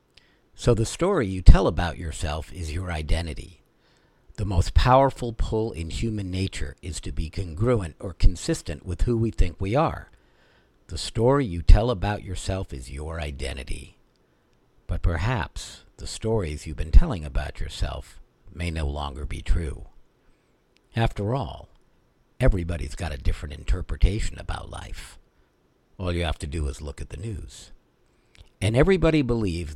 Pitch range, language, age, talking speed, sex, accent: 80-105 Hz, English, 60-79, 150 wpm, male, American